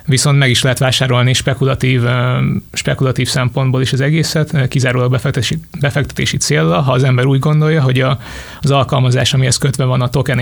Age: 20-39